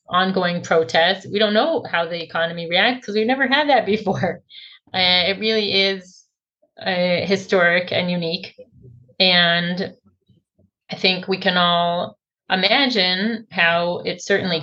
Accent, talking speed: American, 135 wpm